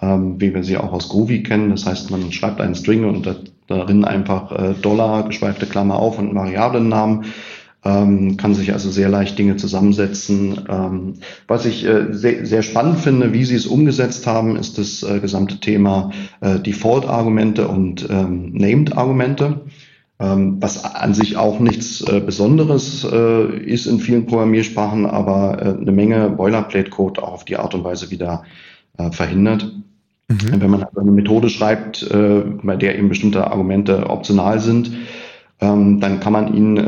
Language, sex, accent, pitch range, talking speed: German, male, German, 100-110 Hz, 160 wpm